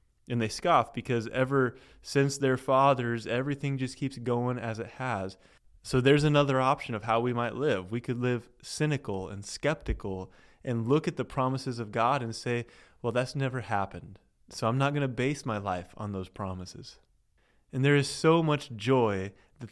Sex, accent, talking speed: male, American, 185 wpm